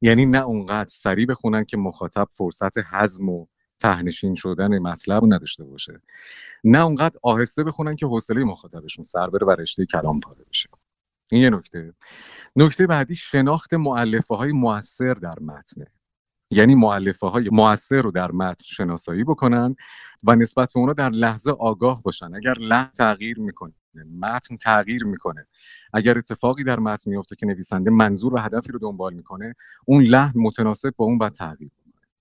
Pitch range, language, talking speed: 95-125 Hz, Persian, 155 wpm